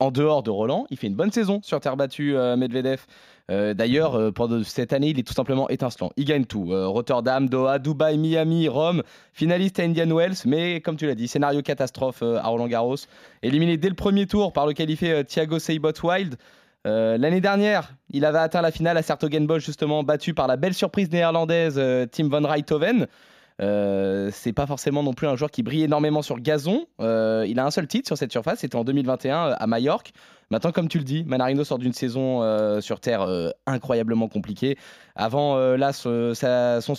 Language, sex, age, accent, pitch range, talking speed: French, male, 20-39, French, 125-160 Hz, 205 wpm